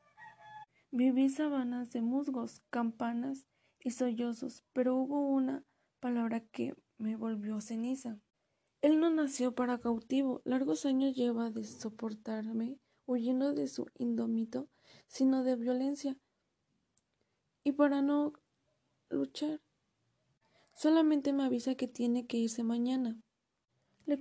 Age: 20-39